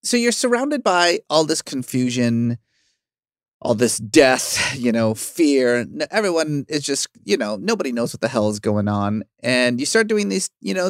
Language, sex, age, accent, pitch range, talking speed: English, male, 30-49, American, 120-195 Hz, 180 wpm